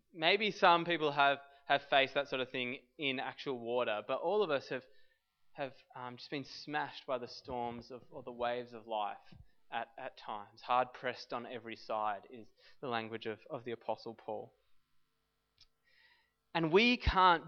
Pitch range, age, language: 125-165 Hz, 20-39, English